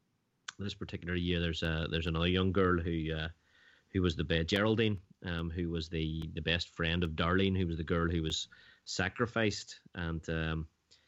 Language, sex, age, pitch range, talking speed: English, male, 30-49, 85-105 Hz, 185 wpm